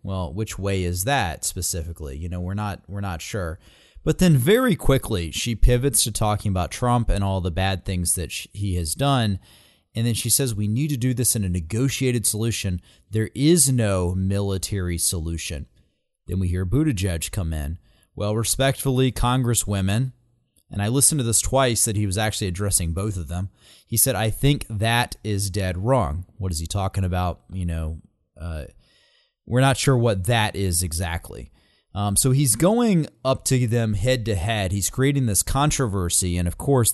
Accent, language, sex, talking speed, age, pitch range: American, English, male, 185 wpm, 30-49, 90-120 Hz